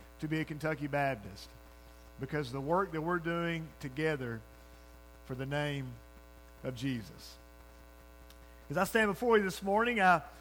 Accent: American